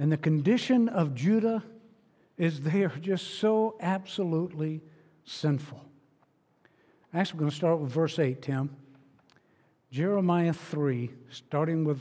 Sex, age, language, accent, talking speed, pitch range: male, 60-79, English, American, 130 wpm, 160-220 Hz